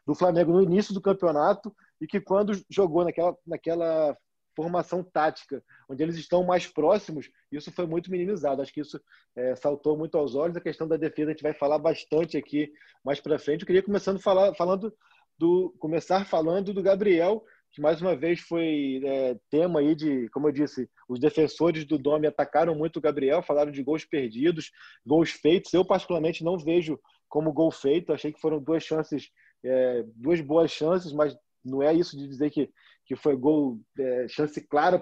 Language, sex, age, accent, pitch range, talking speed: Portuguese, male, 20-39, Brazilian, 145-180 Hz, 185 wpm